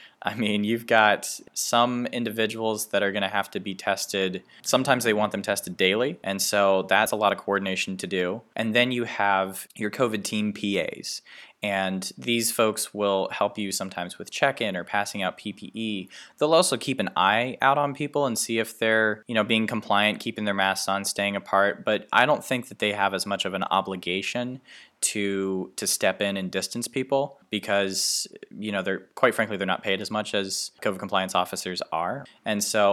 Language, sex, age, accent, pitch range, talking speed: English, male, 20-39, American, 95-110 Hz, 200 wpm